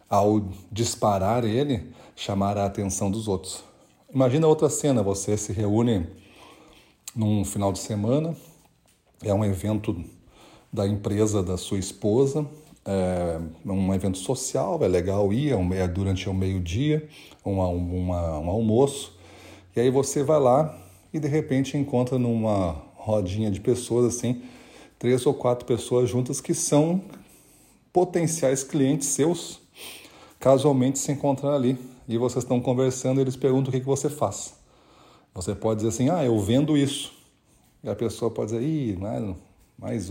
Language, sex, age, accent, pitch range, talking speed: Portuguese, male, 40-59, Brazilian, 95-130 Hz, 150 wpm